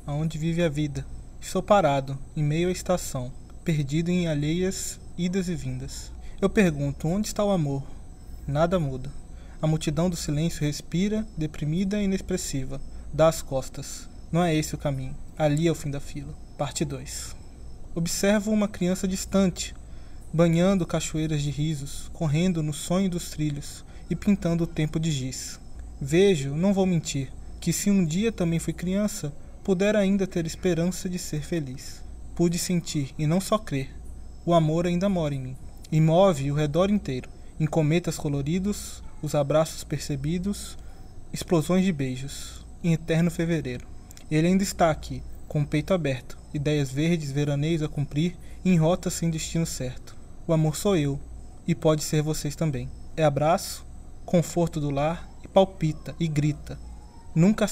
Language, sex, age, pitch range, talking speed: Portuguese, male, 20-39, 145-175 Hz, 155 wpm